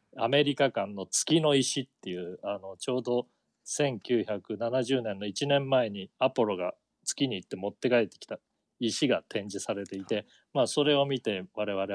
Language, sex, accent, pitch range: Japanese, male, native, 105-140 Hz